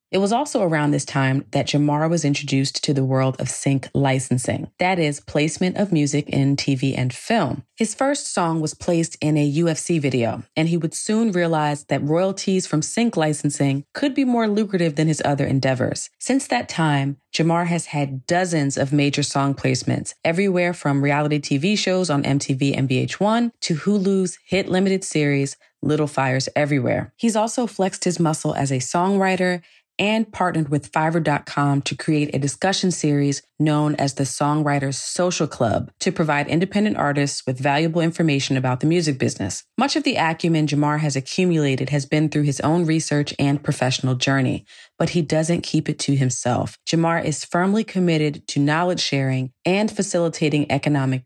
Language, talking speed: English, 170 wpm